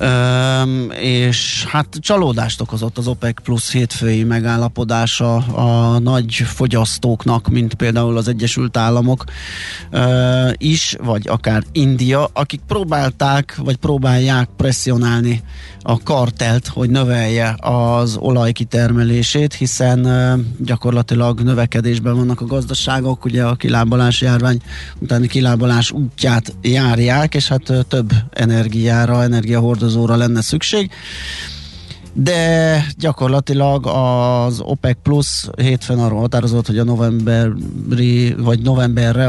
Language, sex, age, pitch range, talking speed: Hungarian, male, 20-39, 115-125 Hz, 110 wpm